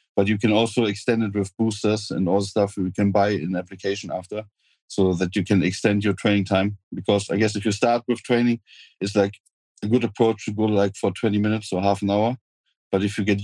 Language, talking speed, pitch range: English, 235 wpm, 95-110 Hz